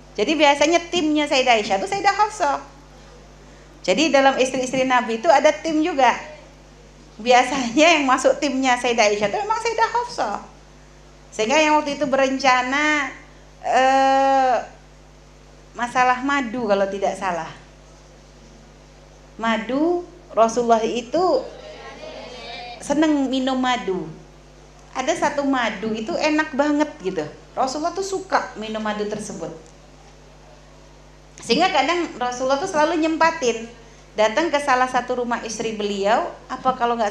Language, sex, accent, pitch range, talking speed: Indonesian, female, native, 215-300 Hz, 115 wpm